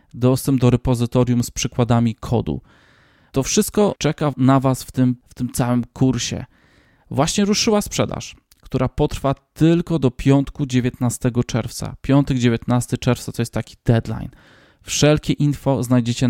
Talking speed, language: 135 wpm, Polish